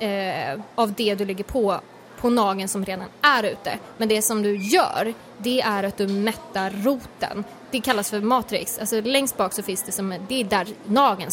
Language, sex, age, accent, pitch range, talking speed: Swedish, female, 20-39, native, 200-250 Hz, 200 wpm